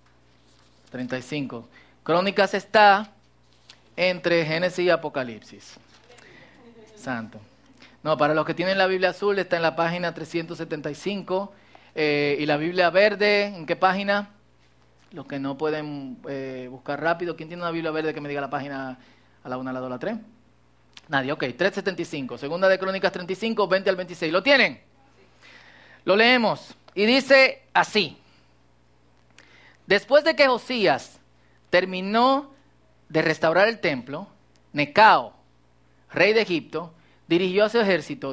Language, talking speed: Spanish, 140 wpm